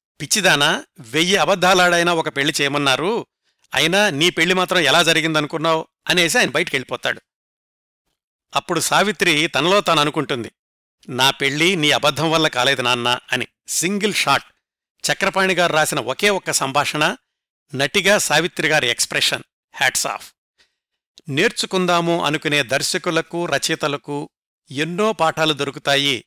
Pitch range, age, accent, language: 145-180 Hz, 60-79, native, Telugu